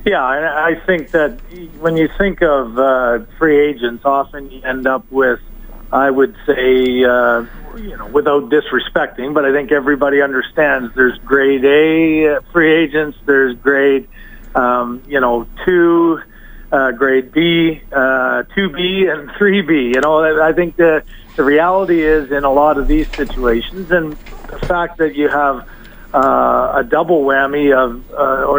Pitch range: 135-160 Hz